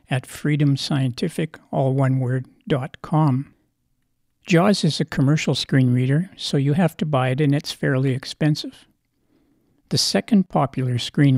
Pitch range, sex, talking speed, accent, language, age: 135-155 Hz, male, 115 wpm, American, English, 60-79